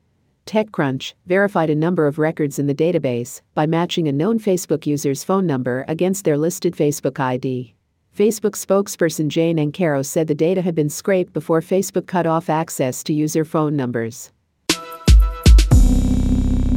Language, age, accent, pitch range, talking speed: English, 50-69, American, 145-185 Hz, 145 wpm